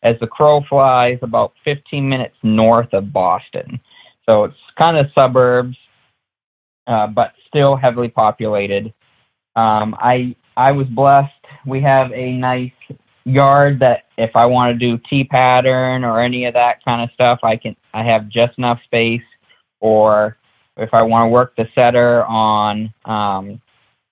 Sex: male